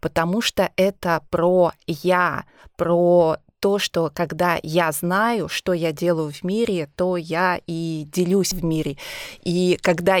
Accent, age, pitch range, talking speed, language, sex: native, 20-39, 165-190 Hz, 140 wpm, Russian, female